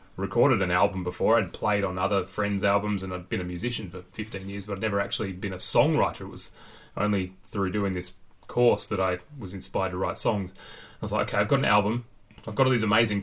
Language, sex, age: English, male, 30-49